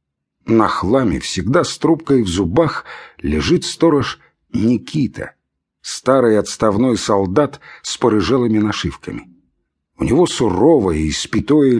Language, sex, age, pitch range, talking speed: English, male, 50-69, 105-145 Hz, 105 wpm